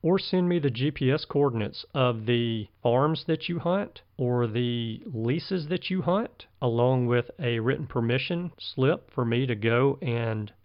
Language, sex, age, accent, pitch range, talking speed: English, male, 40-59, American, 115-155 Hz, 165 wpm